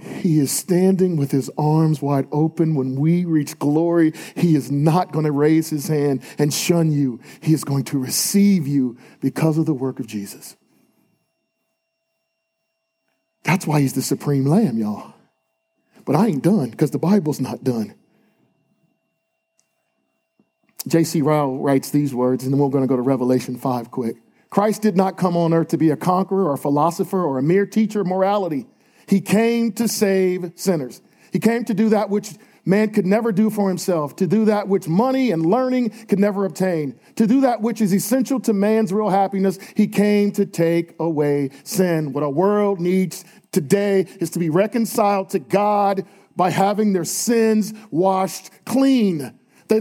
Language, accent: English, American